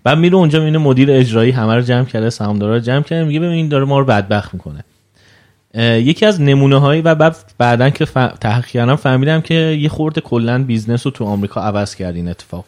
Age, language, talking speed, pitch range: 30-49, Persian, 200 wpm, 110-140 Hz